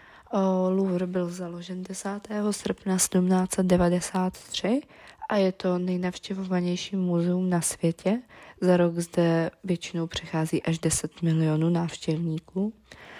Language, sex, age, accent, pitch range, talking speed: Czech, female, 20-39, native, 165-185 Hz, 100 wpm